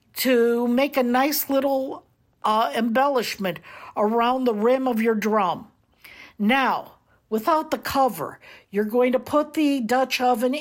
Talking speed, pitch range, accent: 135 wpm, 235-295 Hz, American